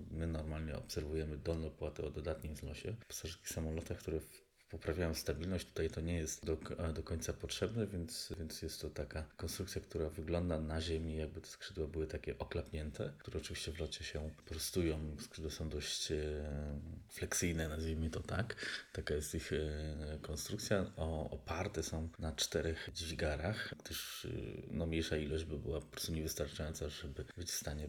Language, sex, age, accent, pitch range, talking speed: Polish, male, 20-39, native, 75-90 Hz, 165 wpm